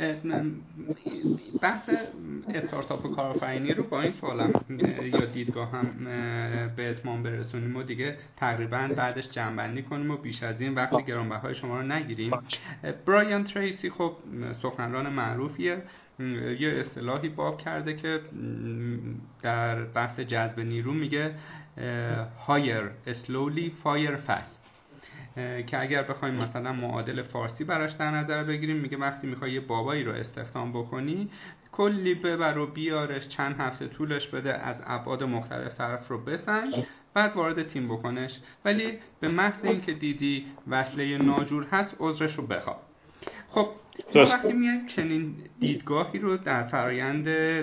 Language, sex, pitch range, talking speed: Persian, male, 120-155 Hz, 135 wpm